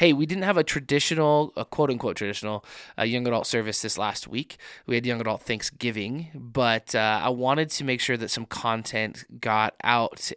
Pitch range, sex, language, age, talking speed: 110-135 Hz, male, English, 20-39, 195 wpm